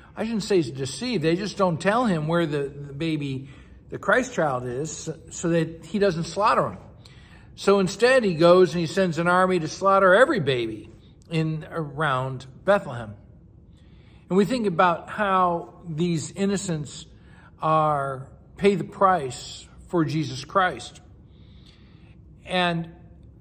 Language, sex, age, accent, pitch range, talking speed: English, male, 60-79, American, 150-190 Hz, 140 wpm